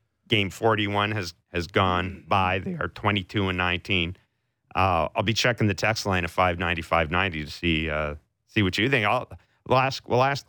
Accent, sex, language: American, male, English